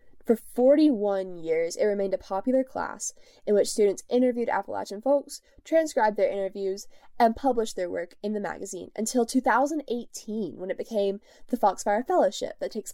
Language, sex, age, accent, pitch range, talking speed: English, female, 10-29, American, 195-270 Hz, 160 wpm